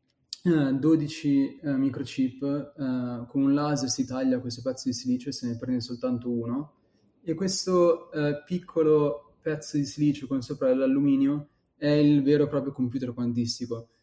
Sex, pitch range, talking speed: male, 125-155 Hz, 155 wpm